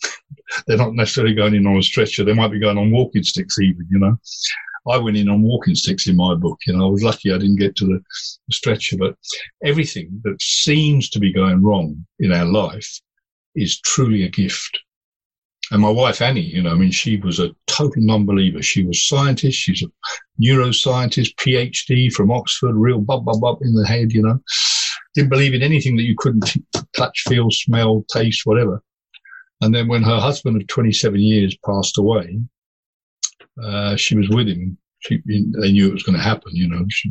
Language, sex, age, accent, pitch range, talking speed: English, male, 60-79, British, 100-130 Hz, 200 wpm